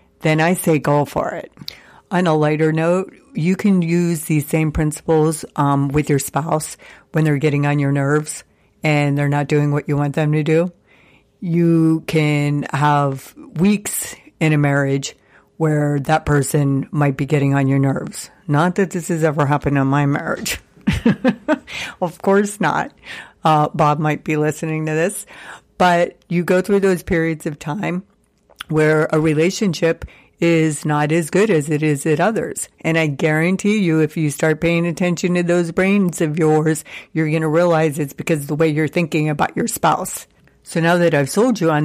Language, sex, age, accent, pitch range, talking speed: English, female, 60-79, American, 150-170 Hz, 180 wpm